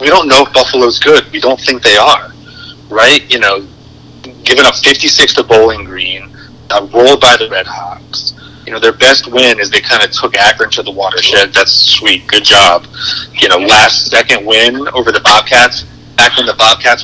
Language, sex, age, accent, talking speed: English, male, 30-49, American, 195 wpm